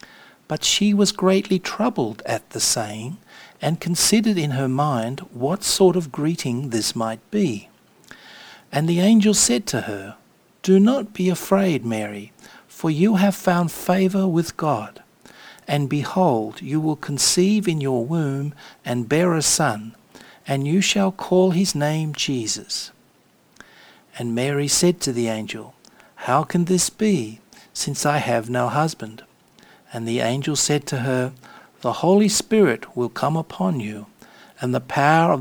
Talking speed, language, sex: 150 wpm, English, male